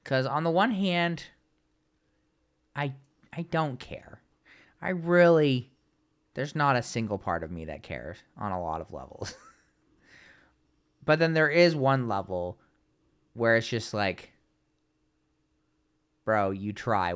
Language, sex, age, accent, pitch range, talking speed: English, male, 20-39, American, 105-145 Hz, 135 wpm